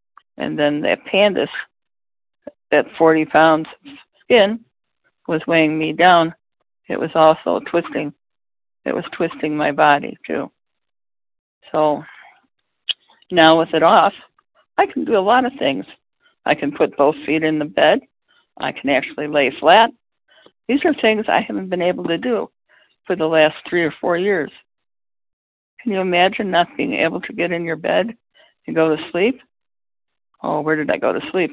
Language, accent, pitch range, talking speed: English, American, 155-195 Hz, 165 wpm